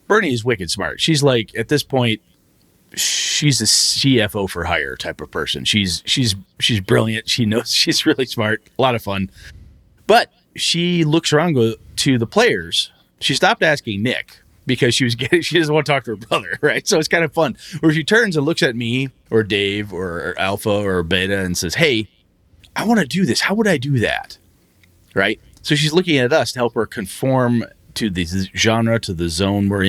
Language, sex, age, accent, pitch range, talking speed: English, male, 30-49, American, 95-130 Hz, 205 wpm